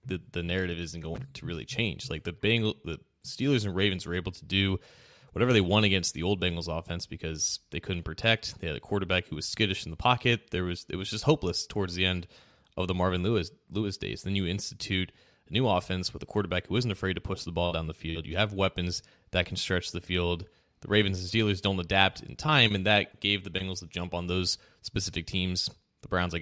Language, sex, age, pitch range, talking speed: English, male, 20-39, 90-110 Hz, 240 wpm